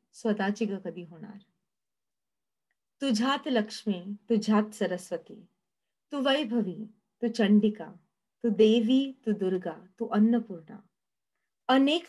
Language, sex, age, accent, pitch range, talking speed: Marathi, female, 30-49, native, 200-240 Hz, 100 wpm